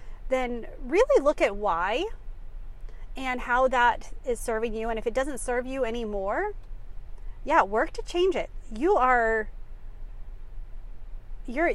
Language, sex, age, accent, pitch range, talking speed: English, female, 30-49, American, 220-285 Hz, 135 wpm